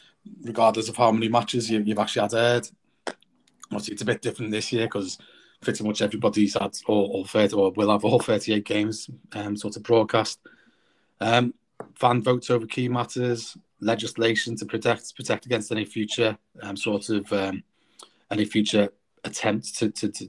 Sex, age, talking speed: male, 30-49, 175 wpm